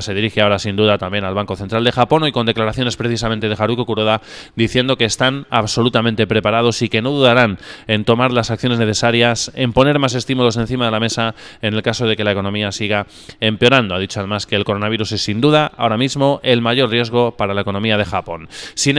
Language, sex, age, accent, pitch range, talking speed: Spanish, male, 20-39, Spanish, 110-135 Hz, 220 wpm